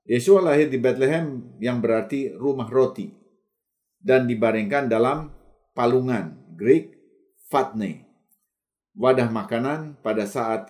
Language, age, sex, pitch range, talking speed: Indonesian, 50-69, male, 110-160 Hz, 100 wpm